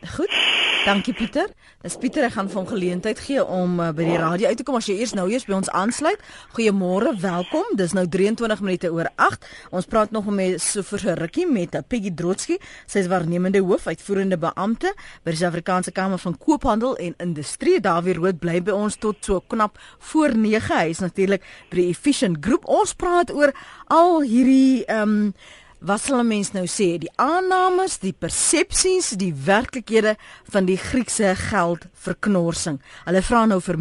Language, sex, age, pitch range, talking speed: English, female, 30-49, 180-255 Hz, 180 wpm